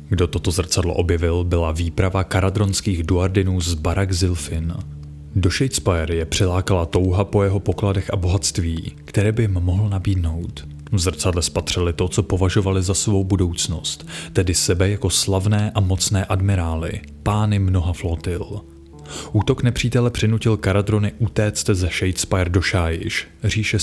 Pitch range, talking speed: 85-105 Hz, 140 wpm